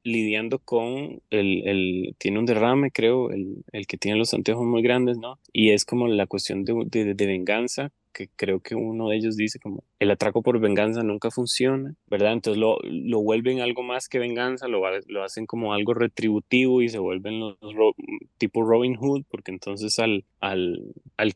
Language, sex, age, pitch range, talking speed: Spanish, male, 20-39, 105-125 Hz, 195 wpm